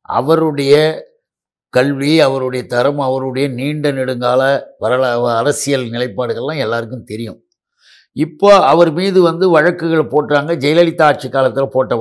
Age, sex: 60-79, male